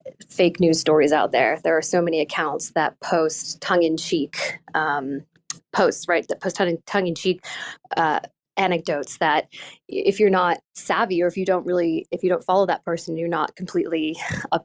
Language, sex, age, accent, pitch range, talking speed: English, female, 20-39, American, 160-195 Hz, 170 wpm